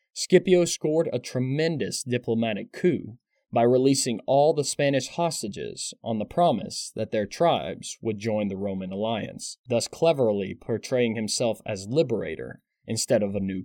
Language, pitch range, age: English, 110-140 Hz, 20-39